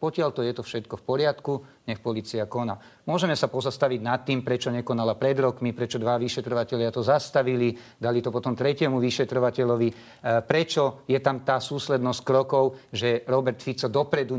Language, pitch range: Slovak, 120-140 Hz